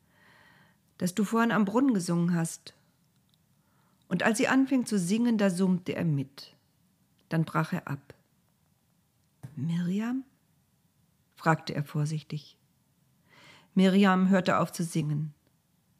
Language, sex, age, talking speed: German, female, 50-69, 115 wpm